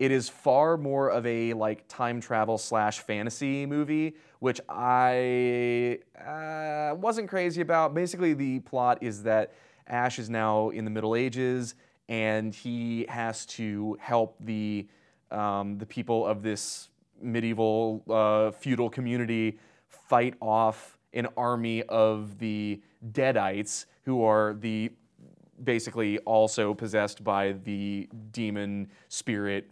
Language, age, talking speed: English, 20-39, 125 wpm